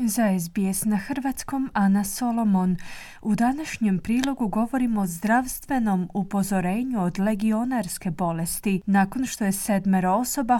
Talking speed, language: 120 wpm, Croatian